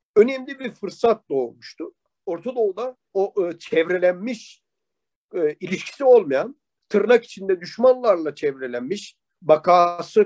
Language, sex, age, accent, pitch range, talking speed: Turkish, male, 50-69, native, 190-270 Hz, 80 wpm